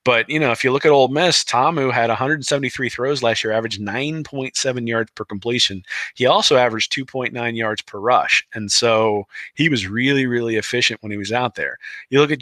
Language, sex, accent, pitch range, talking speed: English, male, American, 105-145 Hz, 205 wpm